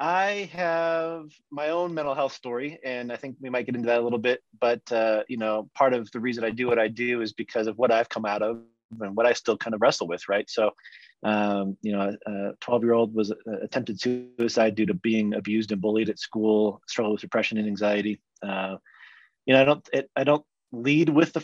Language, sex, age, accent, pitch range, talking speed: English, male, 30-49, American, 110-130 Hz, 235 wpm